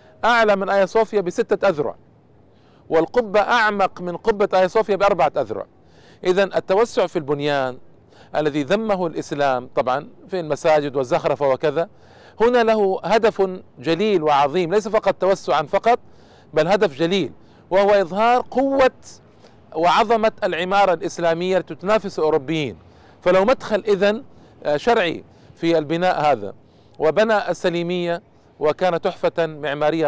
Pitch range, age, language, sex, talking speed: 150-195 Hz, 50-69, Arabic, male, 115 wpm